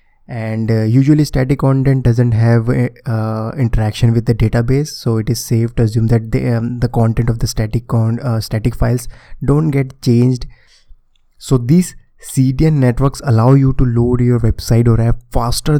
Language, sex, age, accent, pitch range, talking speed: Hindi, male, 20-39, native, 115-125 Hz, 180 wpm